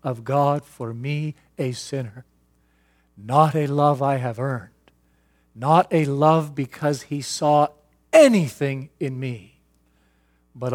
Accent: American